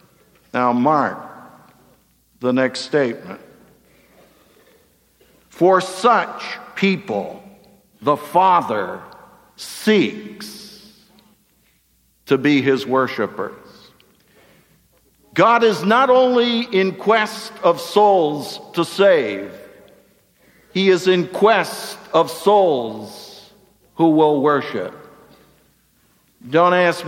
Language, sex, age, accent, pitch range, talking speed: English, male, 60-79, American, 145-210 Hz, 80 wpm